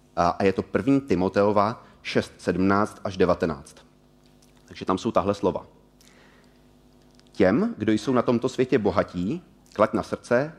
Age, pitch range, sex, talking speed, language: 30-49, 95-125 Hz, male, 130 wpm, Czech